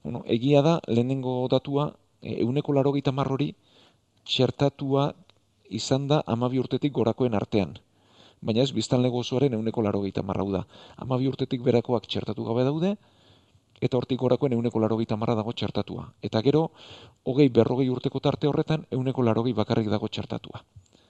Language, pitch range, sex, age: Spanish, 110-130 Hz, male, 40-59